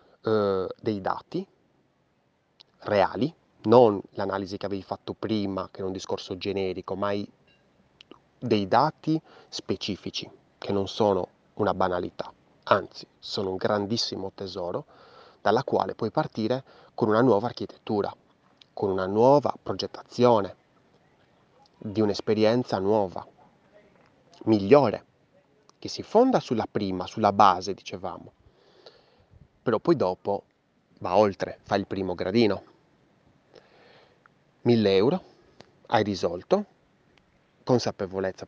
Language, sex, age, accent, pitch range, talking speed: Italian, male, 30-49, native, 100-125 Hz, 105 wpm